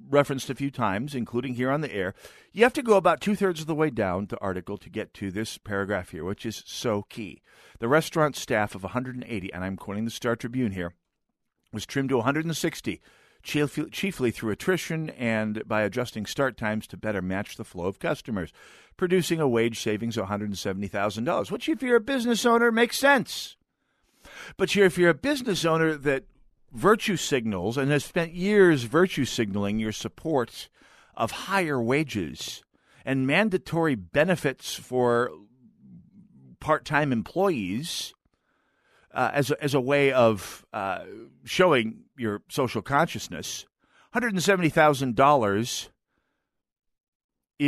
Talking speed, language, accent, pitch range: 145 wpm, English, American, 110-170 Hz